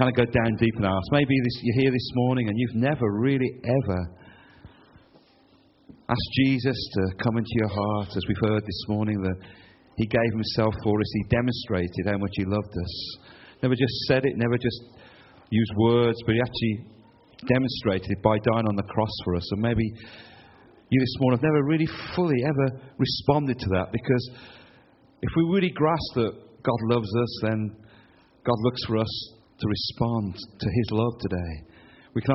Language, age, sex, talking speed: English, 40-59, male, 180 wpm